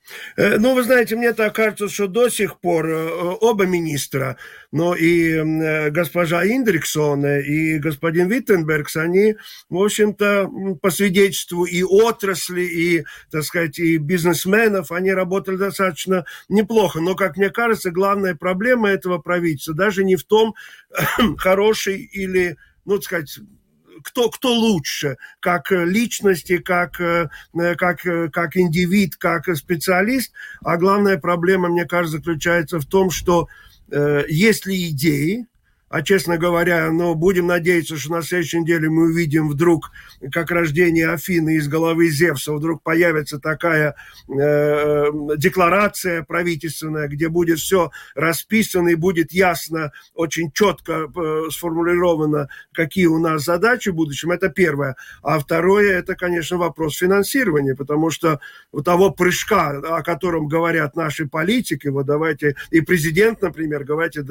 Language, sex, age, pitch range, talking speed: Russian, male, 50-69, 160-190 Hz, 130 wpm